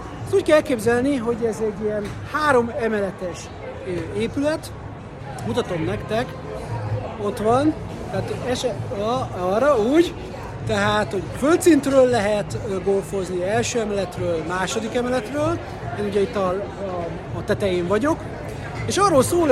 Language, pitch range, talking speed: Hungarian, 195-245 Hz, 115 wpm